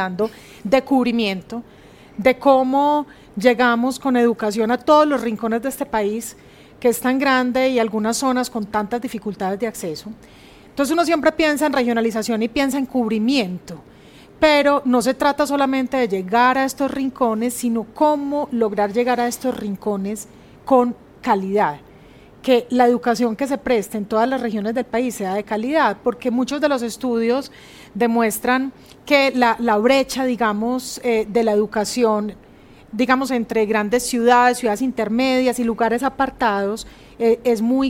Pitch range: 215-255 Hz